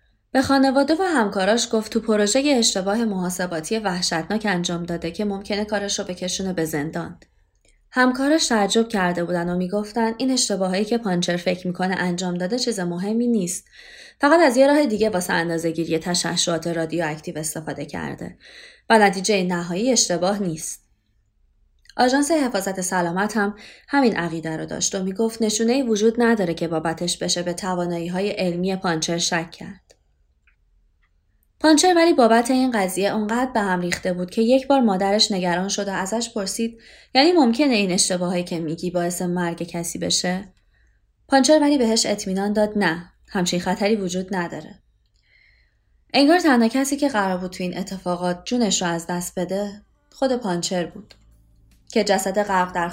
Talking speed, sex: 155 wpm, female